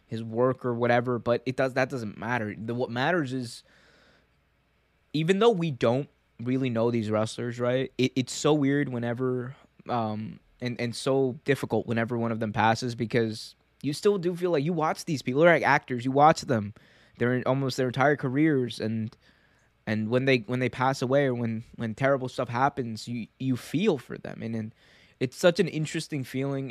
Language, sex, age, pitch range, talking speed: English, male, 20-39, 110-130 Hz, 195 wpm